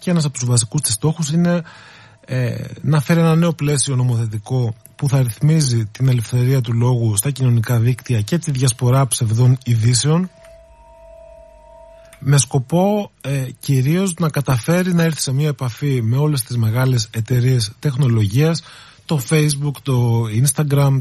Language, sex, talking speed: Greek, male, 145 wpm